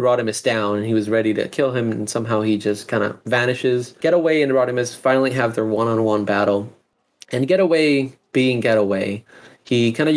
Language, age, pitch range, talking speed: English, 20-39, 120-140 Hz, 185 wpm